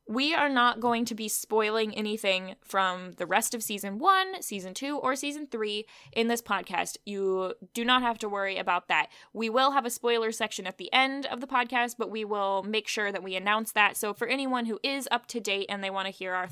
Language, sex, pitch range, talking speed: English, female, 195-245 Hz, 235 wpm